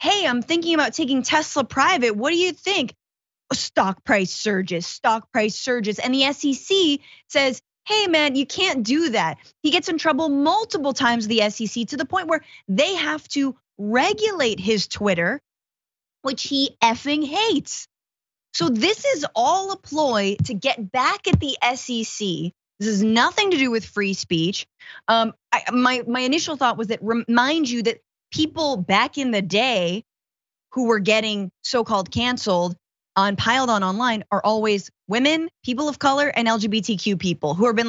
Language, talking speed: English, 165 wpm